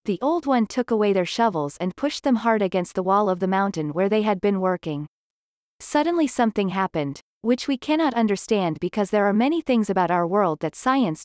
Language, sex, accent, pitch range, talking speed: English, female, American, 185-245 Hz, 210 wpm